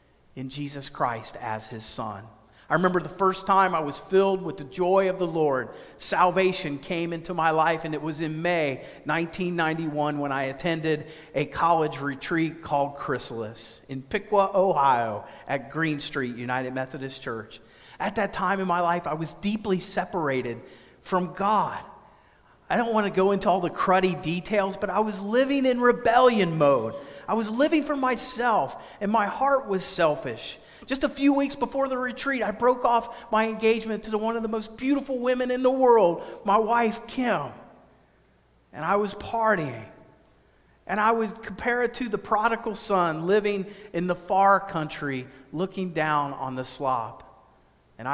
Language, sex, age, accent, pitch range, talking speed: English, male, 40-59, American, 145-215 Hz, 170 wpm